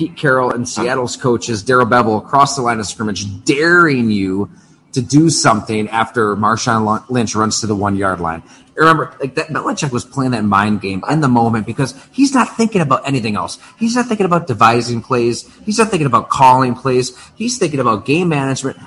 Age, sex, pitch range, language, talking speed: 30-49, male, 115-150 Hz, English, 195 wpm